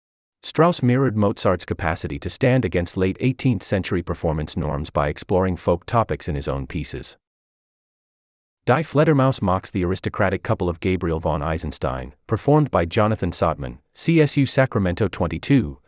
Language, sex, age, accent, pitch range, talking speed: English, male, 30-49, American, 75-115 Hz, 135 wpm